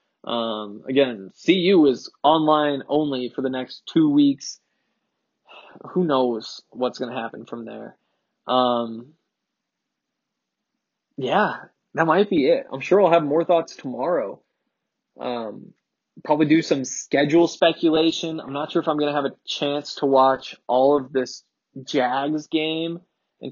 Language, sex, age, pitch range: English, male, 20-39, 130-165 Hz